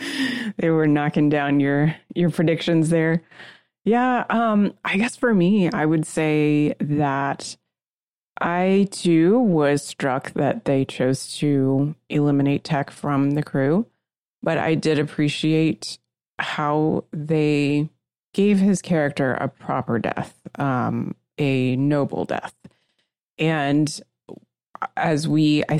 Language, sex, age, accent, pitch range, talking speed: English, female, 30-49, American, 140-165 Hz, 120 wpm